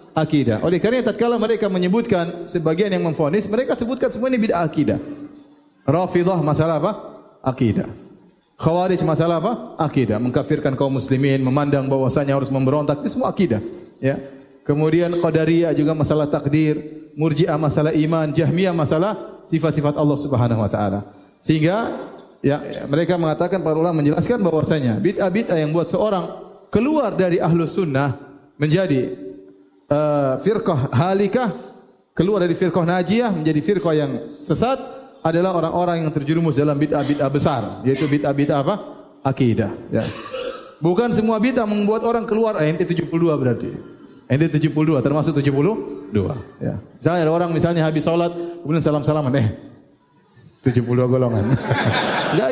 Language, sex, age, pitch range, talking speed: Indonesian, male, 30-49, 145-205 Hz, 130 wpm